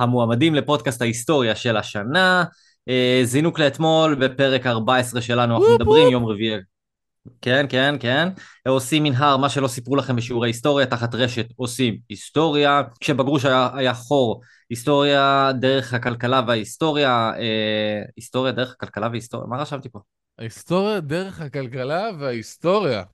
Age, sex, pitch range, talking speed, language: 20-39, male, 115-140 Hz, 125 wpm, Hebrew